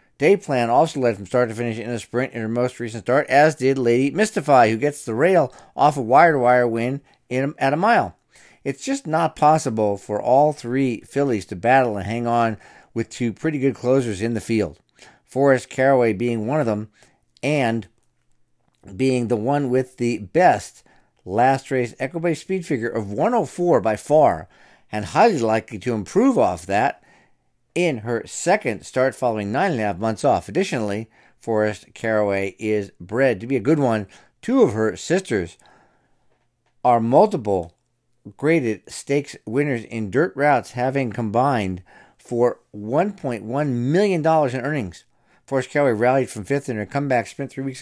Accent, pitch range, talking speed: American, 110-140 Hz, 165 wpm